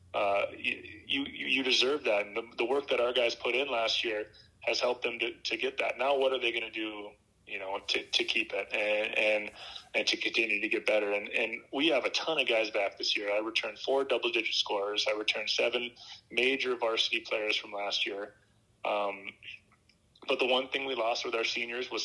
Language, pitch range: English, 105-125 Hz